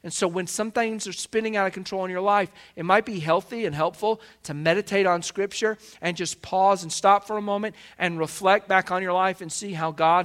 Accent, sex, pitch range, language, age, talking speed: American, male, 145-195 Hz, English, 40-59, 240 wpm